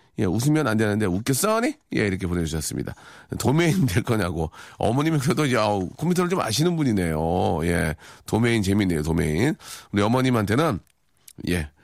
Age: 40-59